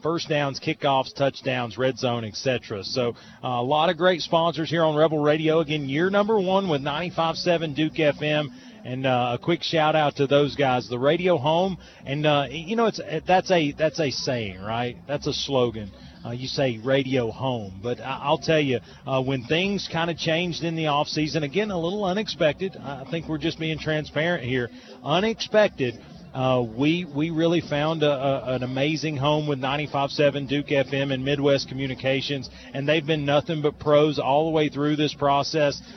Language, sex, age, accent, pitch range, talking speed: English, male, 40-59, American, 130-155 Hz, 185 wpm